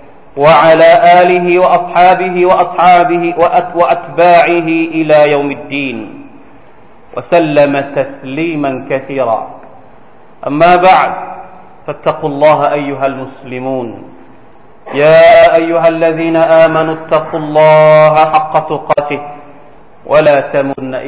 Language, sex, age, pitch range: Thai, male, 40-59, 135-160 Hz